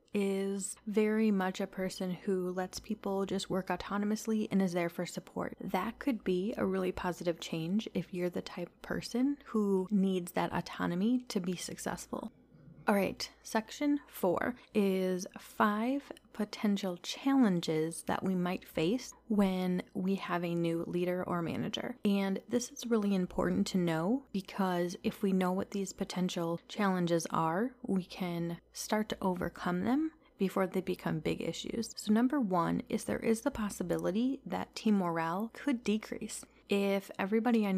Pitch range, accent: 180-220 Hz, American